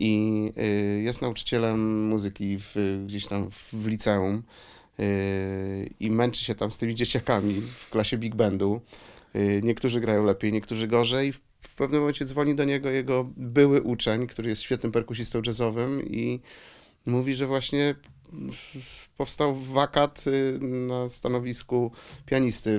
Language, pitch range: Polish, 105-125 Hz